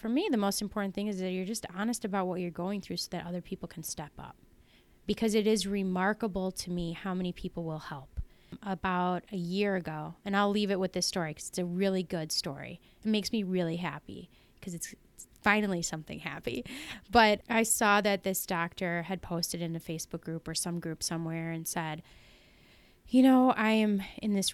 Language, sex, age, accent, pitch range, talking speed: English, female, 20-39, American, 175-220 Hz, 210 wpm